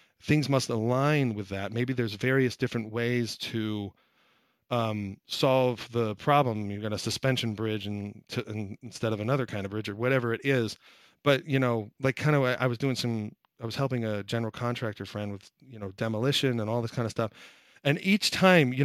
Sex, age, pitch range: male, 40-59, 110-140 Hz